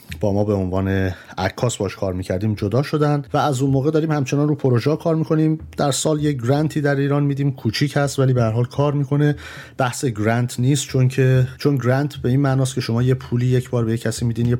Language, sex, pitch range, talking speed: Persian, male, 105-130 Hz, 230 wpm